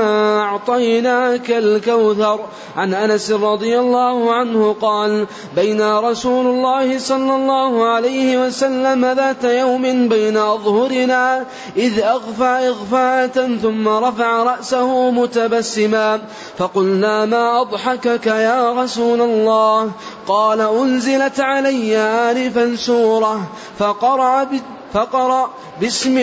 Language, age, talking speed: Arabic, 20-39, 90 wpm